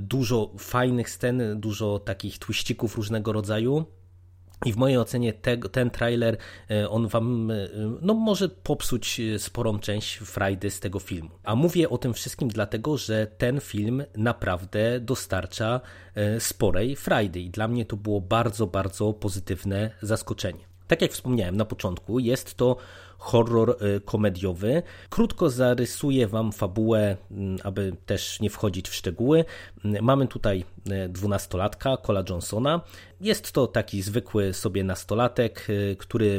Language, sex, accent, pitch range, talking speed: Polish, male, native, 95-120 Hz, 130 wpm